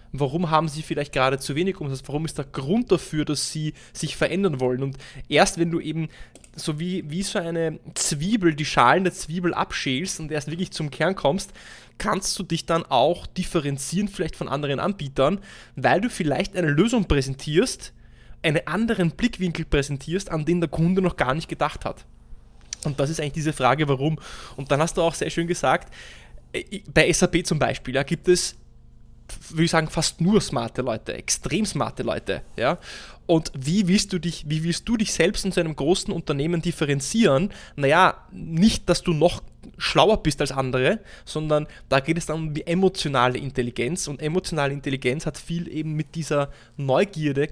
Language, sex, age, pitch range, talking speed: German, male, 20-39, 140-180 Hz, 180 wpm